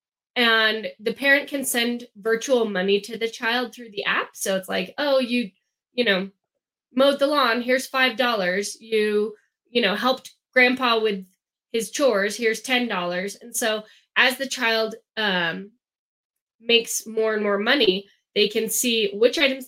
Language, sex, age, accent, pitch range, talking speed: English, female, 10-29, American, 195-240 Hz, 160 wpm